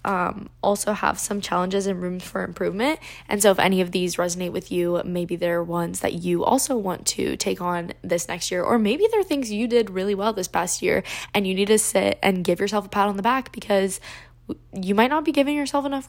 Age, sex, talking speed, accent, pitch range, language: 10-29, female, 235 wpm, American, 185-245 Hz, English